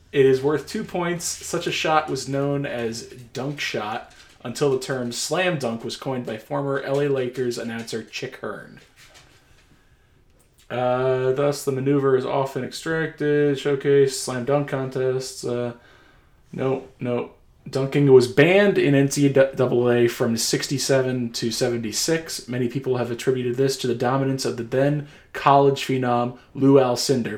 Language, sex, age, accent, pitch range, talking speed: English, male, 20-39, American, 120-140 Hz, 140 wpm